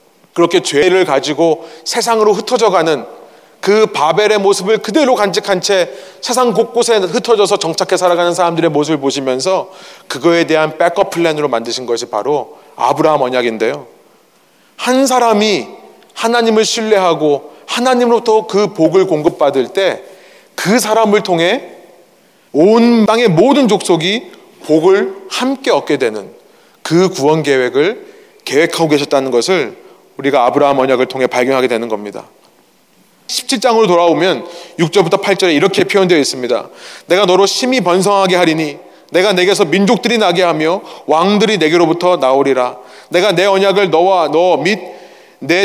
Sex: male